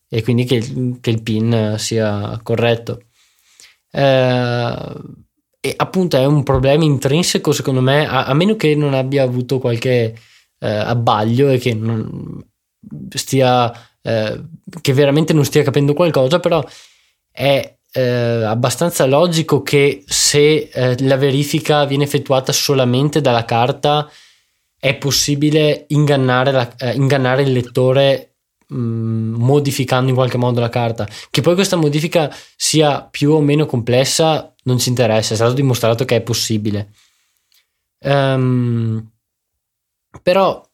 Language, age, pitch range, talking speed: Italian, 20-39, 120-145 Hz, 120 wpm